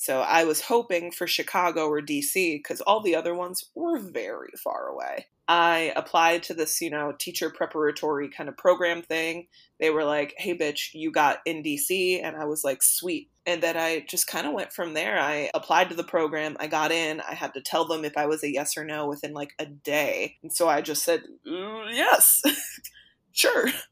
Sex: female